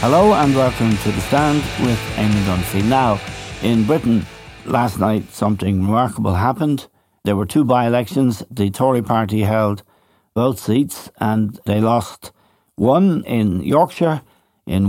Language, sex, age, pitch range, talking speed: English, male, 60-79, 100-125 Hz, 135 wpm